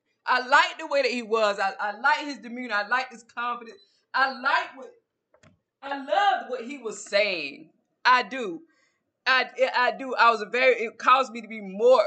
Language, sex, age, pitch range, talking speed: English, female, 20-39, 185-275 Hz, 200 wpm